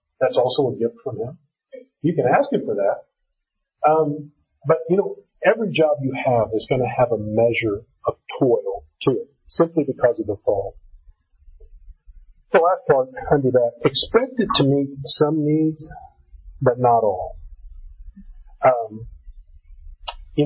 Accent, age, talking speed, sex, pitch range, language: American, 40-59, 150 wpm, male, 100-160 Hz, English